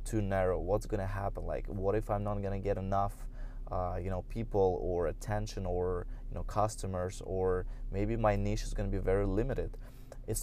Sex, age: male, 20-39